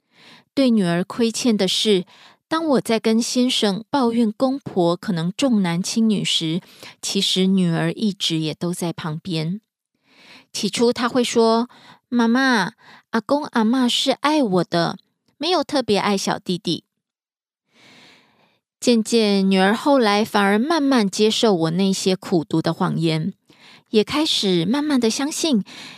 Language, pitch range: Korean, 180-240 Hz